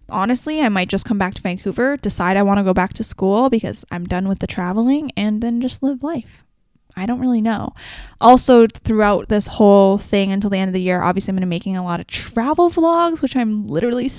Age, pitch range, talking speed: 10-29, 195-245 Hz, 235 wpm